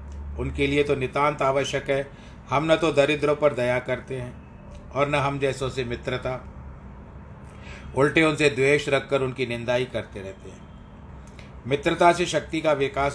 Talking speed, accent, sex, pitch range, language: 160 wpm, native, male, 120-145 Hz, Hindi